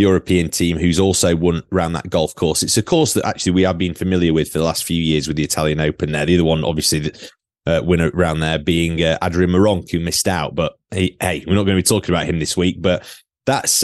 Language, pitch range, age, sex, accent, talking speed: English, 85-100 Hz, 20-39, male, British, 255 wpm